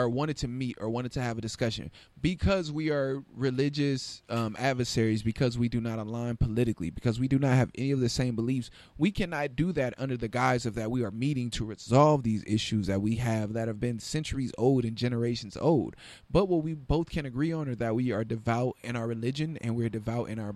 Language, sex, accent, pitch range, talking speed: English, male, American, 115-150 Hz, 230 wpm